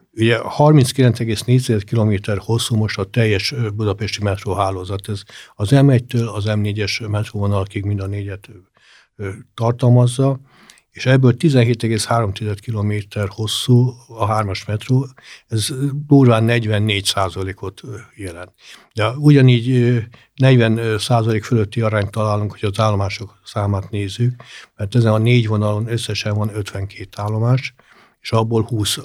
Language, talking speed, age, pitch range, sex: Hungarian, 115 wpm, 60-79, 105-120 Hz, male